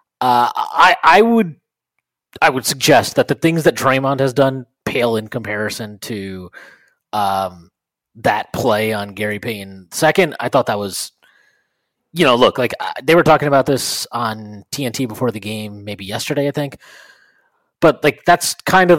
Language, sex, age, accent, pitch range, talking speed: English, male, 30-49, American, 120-165 Hz, 165 wpm